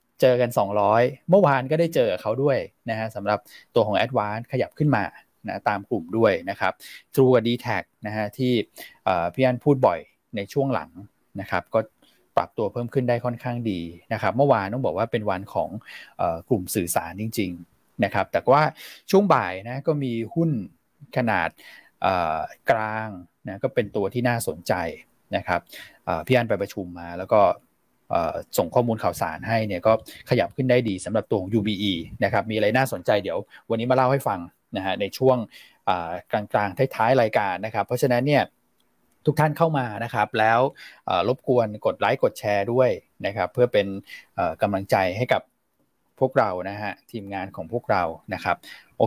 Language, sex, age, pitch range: Thai, male, 20-39, 105-130 Hz